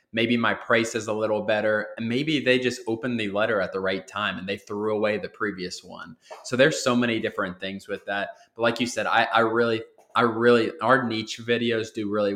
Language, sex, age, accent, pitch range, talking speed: English, male, 20-39, American, 100-120 Hz, 230 wpm